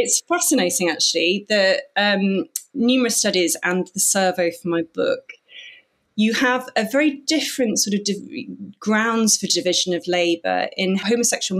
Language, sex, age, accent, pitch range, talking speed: English, female, 30-49, British, 175-230 Hz, 145 wpm